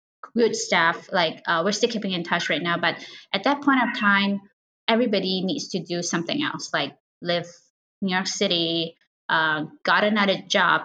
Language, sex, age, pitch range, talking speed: English, female, 20-39, 180-225 Hz, 175 wpm